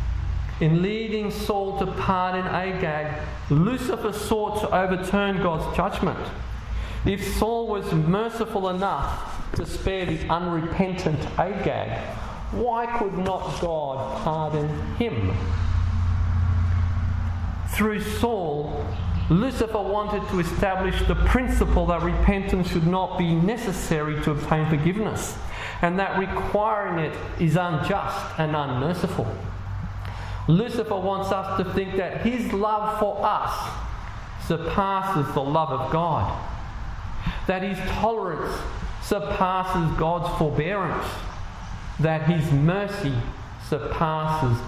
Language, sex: English, male